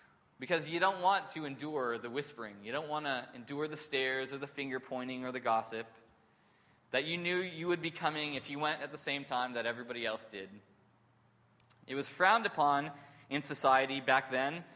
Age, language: 20-39, English